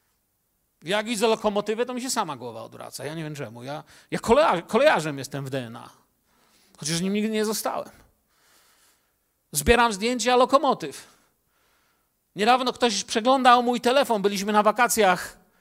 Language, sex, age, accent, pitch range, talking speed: Polish, male, 40-59, native, 145-235 Hz, 135 wpm